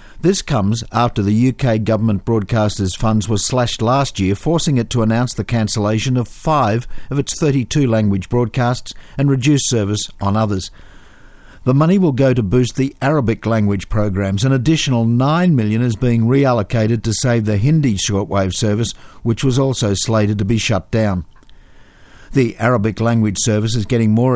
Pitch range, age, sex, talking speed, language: 105-125 Hz, 50-69, male, 170 wpm, English